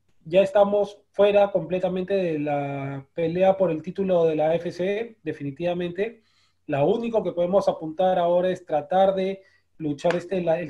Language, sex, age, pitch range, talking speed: Spanish, male, 30-49, 165-205 Hz, 150 wpm